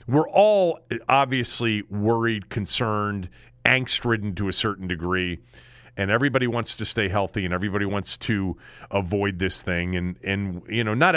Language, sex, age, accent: English, male, 40-59, American